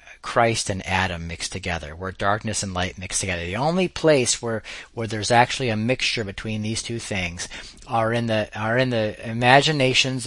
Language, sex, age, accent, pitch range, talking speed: English, male, 40-59, American, 90-115 Hz, 180 wpm